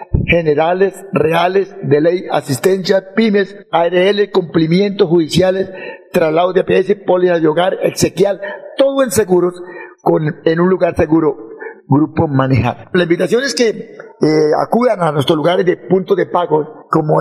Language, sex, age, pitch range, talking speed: Spanish, male, 50-69, 160-190 Hz, 140 wpm